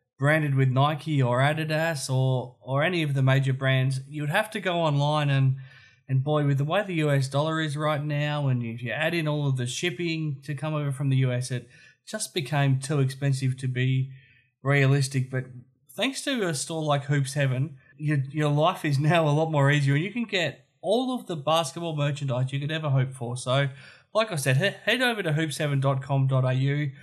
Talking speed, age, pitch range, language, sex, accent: 205 wpm, 20-39, 135-155 Hz, English, male, Australian